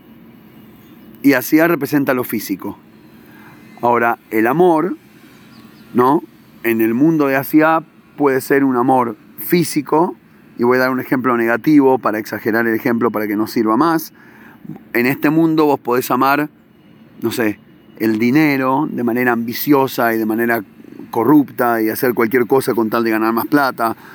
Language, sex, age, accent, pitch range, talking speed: Spanish, male, 40-59, Argentinian, 120-150 Hz, 155 wpm